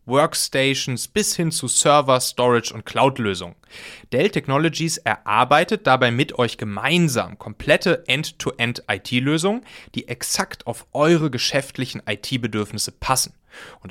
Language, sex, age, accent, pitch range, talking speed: German, male, 30-49, German, 110-150 Hz, 110 wpm